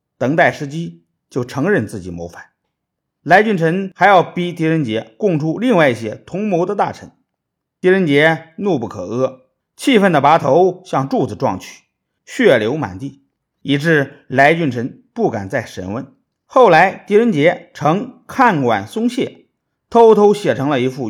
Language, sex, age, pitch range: Chinese, male, 50-69, 120-185 Hz